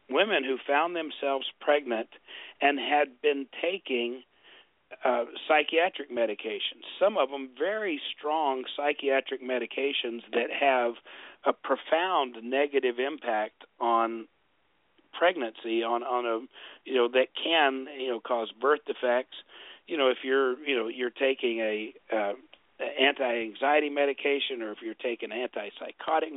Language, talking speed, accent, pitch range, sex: English, 125 wpm, American, 120-150 Hz, male